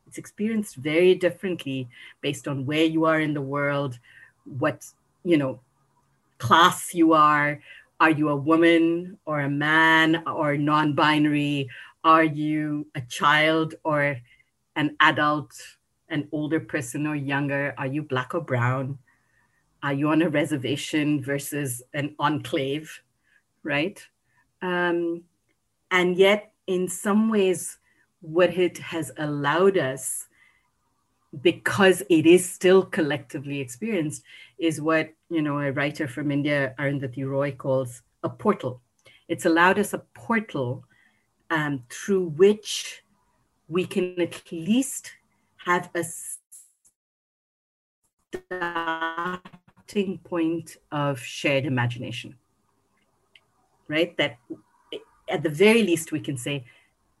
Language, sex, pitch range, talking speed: English, female, 140-175 Hz, 115 wpm